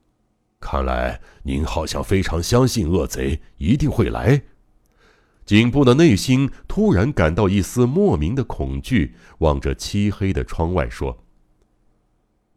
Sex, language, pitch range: male, Chinese, 70-105 Hz